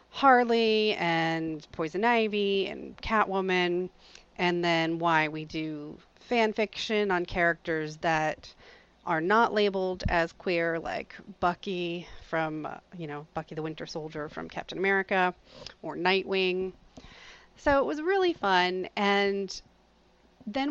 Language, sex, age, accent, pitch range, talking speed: English, female, 30-49, American, 165-205 Hz, 120 wpm